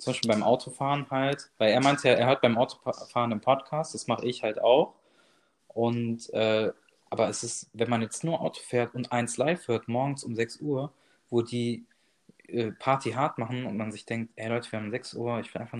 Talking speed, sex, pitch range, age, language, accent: 220 wpm, male, 110-130 Hz, 20-39, German, German